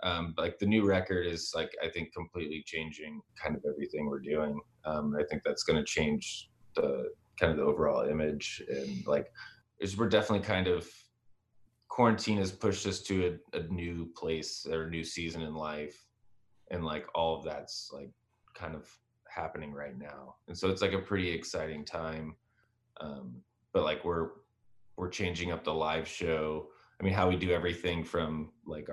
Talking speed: 185 wpm